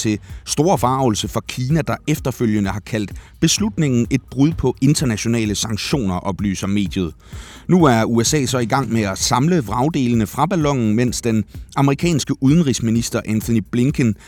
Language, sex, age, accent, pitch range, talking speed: Danish, male, 30-49, native, 105-130 Hz, 145 wpm